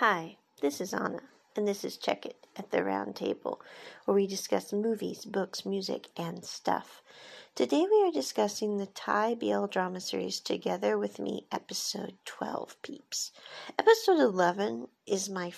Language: English